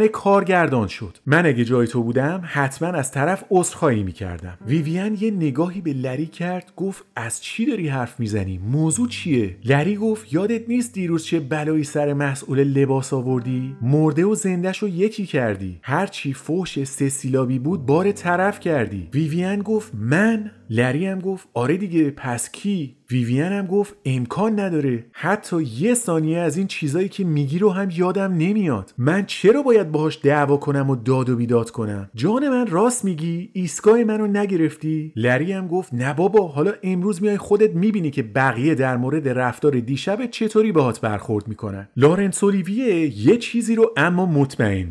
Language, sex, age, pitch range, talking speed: Persian, male, 30-49, 130-195 Hz, 165 wpm